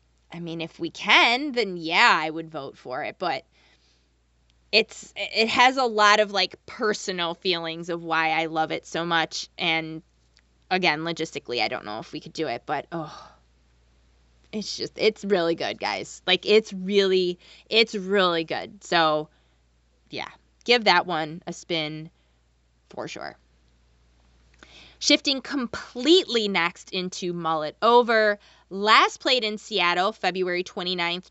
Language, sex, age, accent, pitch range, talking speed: English, female, 20-39, American, 160-215 Hz, 145 wpm